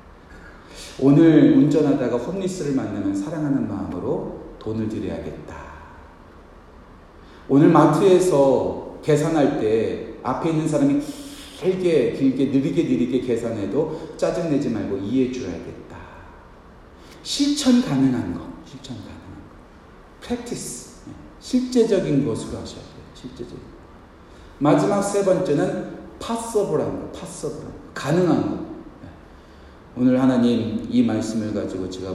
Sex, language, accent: male, Korean, native